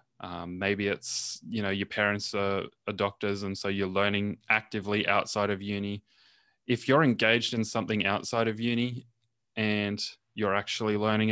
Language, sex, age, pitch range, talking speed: English, male, 20-39, 100-115 Hz, 160 wpm